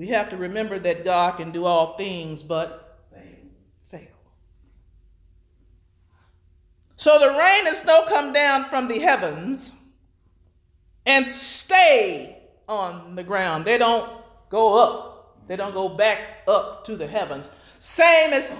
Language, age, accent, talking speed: English, 40-59, American, 135 wpm